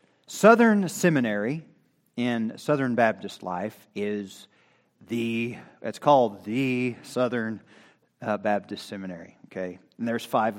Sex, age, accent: male, 40-59, American